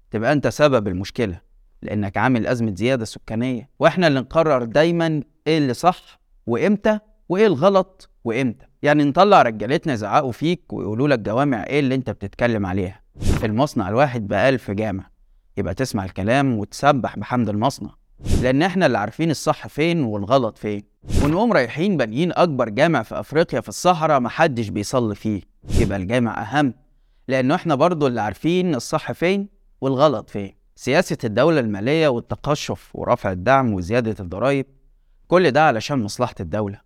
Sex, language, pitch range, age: male, Arabic, 110-150 Hz, 20-39